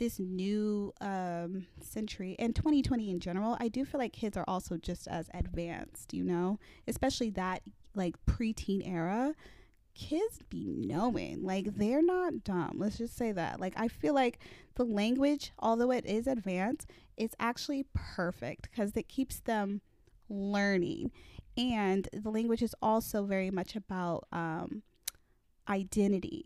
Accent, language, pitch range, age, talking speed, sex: American, English, 185-235 Hz, 20-39, 145 wpm, female